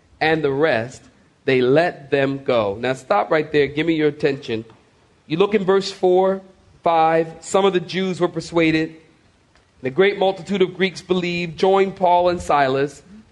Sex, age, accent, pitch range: male, 40-59, American, 150-190 Hz